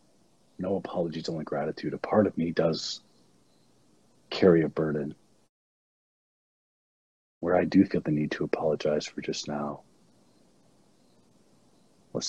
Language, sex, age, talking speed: English, male, 40-59, 115 wpm